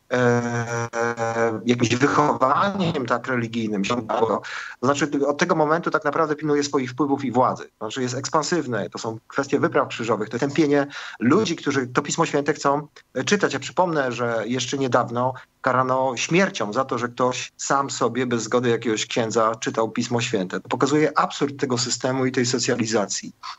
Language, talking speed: Polish, 160 wpm